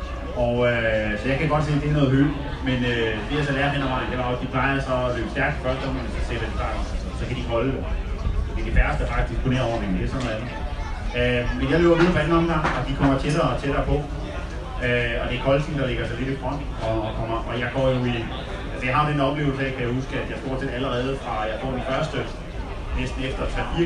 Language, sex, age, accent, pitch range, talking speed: Danish, male, 30-49, native, 115-140 Hz, 285 wpm